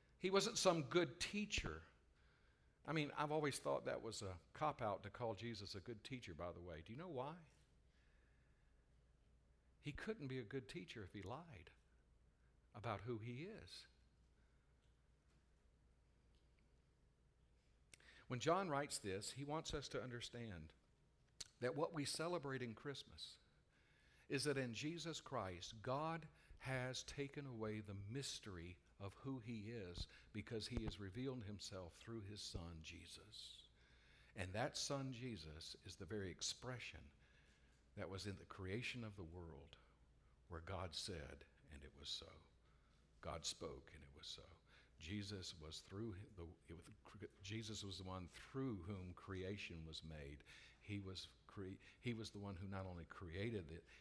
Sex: male